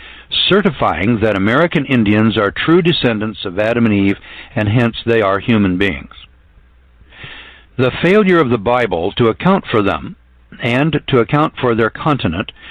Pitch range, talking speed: 105-135 Hz, 150 wpm